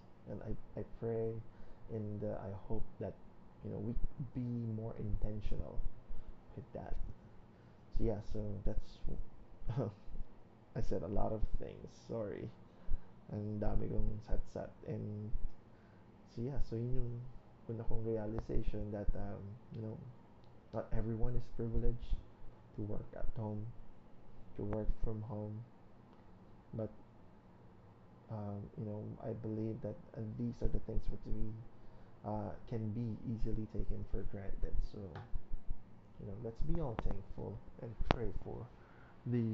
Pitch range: 105-115 Hz